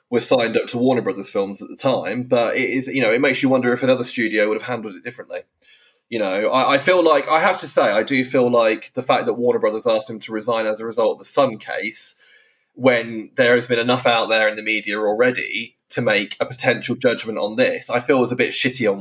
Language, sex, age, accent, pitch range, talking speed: English, male, 20-39, British, 110-135 Hz, 260 wpm